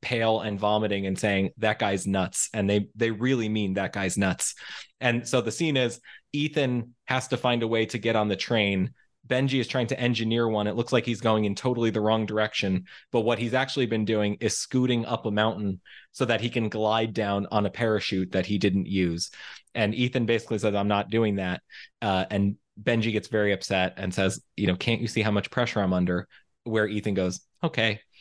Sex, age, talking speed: male, 20-39, 215 wpm